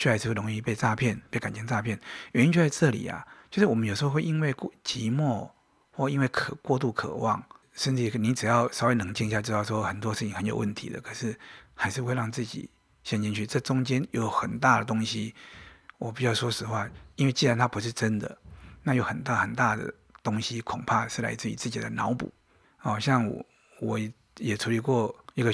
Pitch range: 110-135 Hz